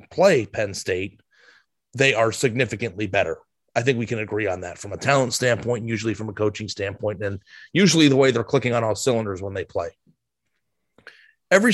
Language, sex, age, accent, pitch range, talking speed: English, male, 30-49, American, 115-140 Hz, 185 wpm